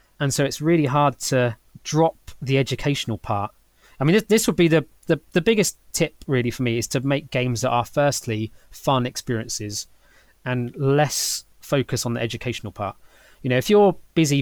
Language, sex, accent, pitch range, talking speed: English, male, British, 120-150 Hz, 185 wpm